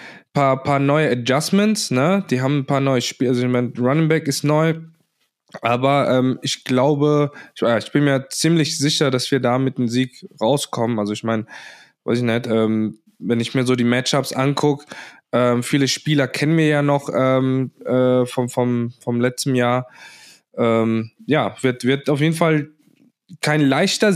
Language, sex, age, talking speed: German, male, 20-39, 180 wpm